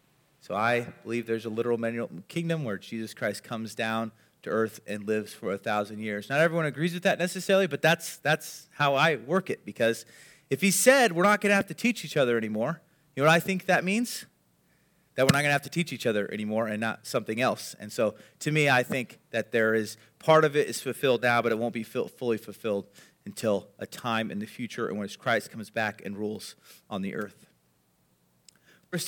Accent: American